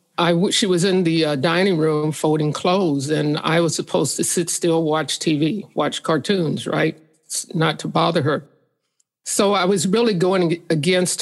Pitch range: 160-185 Hz